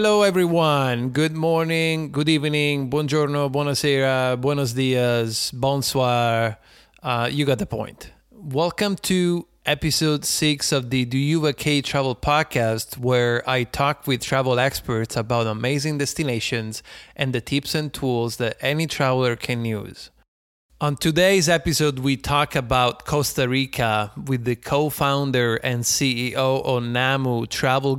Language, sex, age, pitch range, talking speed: English, male, 30-49, 125-150 Hz, 135 wpm